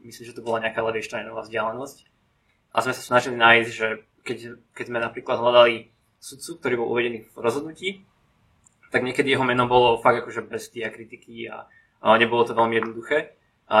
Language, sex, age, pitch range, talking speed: Slovak, male, 20-39, 115-125 Hz, 175 wpm